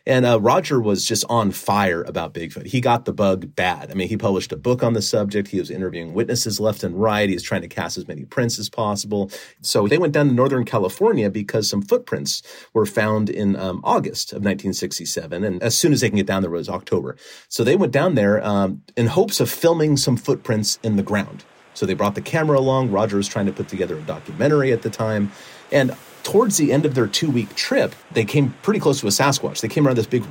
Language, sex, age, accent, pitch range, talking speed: English, male, 40-59, American, 100-130 Hz, 240 wpm